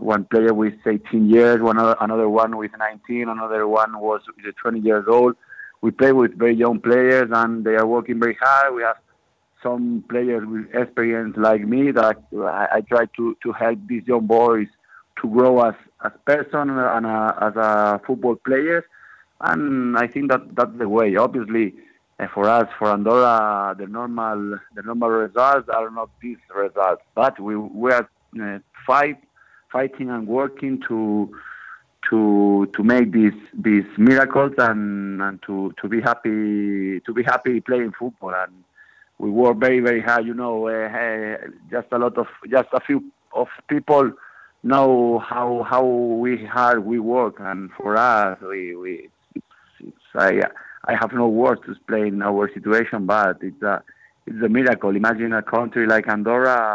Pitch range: 110-125 Hz